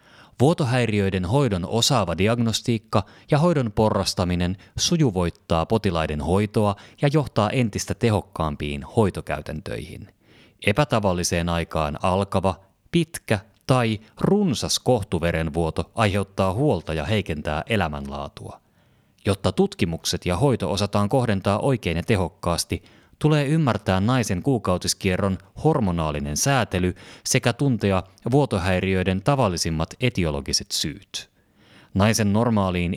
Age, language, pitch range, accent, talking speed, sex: 30-49, Finnish, 90-115 Hz, native, 90 wpm, male